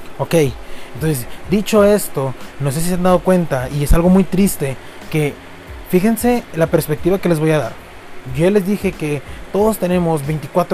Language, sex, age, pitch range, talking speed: English, male, 30-49, 145-195 Hz, 185 wpm